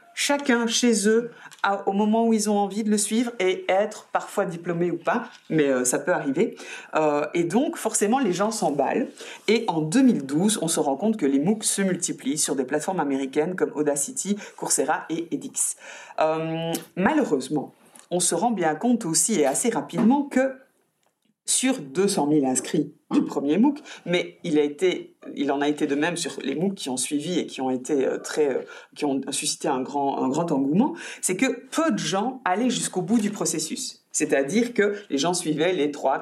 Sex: female